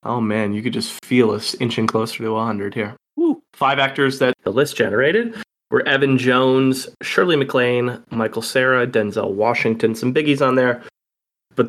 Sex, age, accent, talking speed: male, 20-39, American, 170 wpm